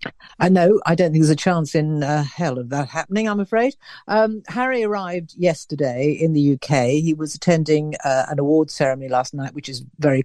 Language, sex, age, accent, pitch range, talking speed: English, female, 50-69, British, 140-175 Hz, 205 wpm